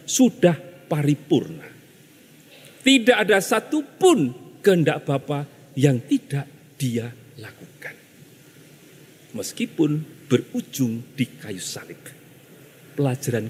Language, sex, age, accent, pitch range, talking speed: Indonesian, male, 40-59, native, 140-180 Hz, 75 wpm